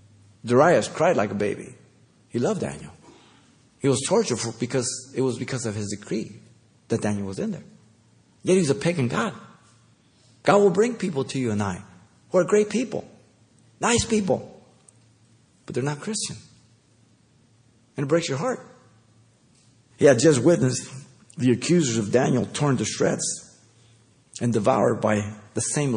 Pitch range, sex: 105-125 Hz, male